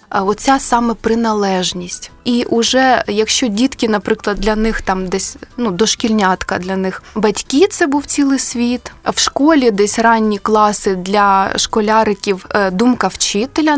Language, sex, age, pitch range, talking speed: Ukrainian, female, 20-39, 205-260 Hz, 130 wpm